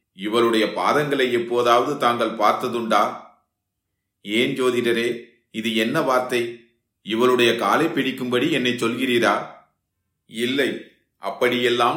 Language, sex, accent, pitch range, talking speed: Tamil, male, native, 115-130 Hz, 85 wpm